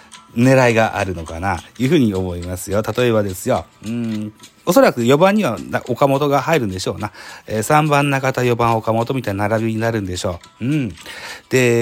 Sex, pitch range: male, 95-130 Hz